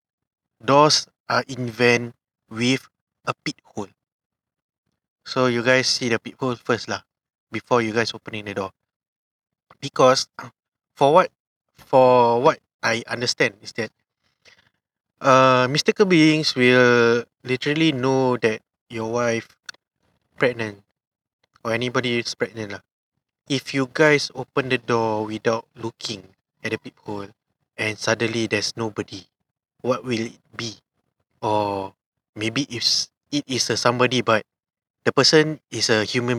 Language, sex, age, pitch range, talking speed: English, male, 20-39, 110-135 Hz, 130 wpm